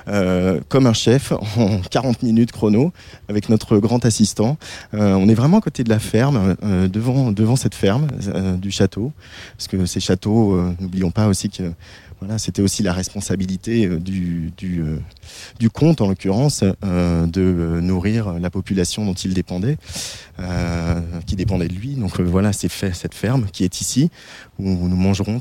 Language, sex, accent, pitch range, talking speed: French, male, French, 95-115 Hz, 180 wpm